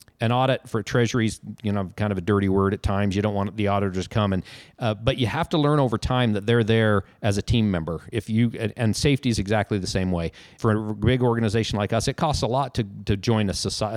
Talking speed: 260 wpm